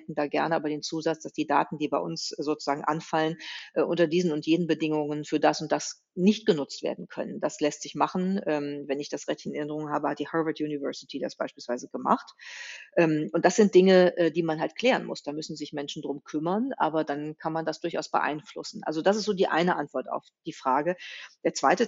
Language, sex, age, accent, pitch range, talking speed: German, female, 40-59, German, 150-180 Hz, 215 wpm